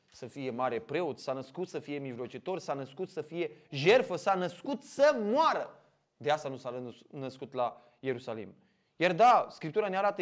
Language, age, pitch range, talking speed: Romanian, 20-39, 140-190 Hz, 175 wpm